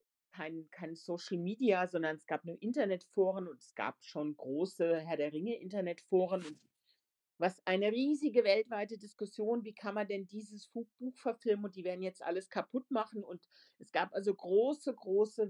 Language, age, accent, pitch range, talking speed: German, 50-69, German, 190-240 Hz, 155 wpm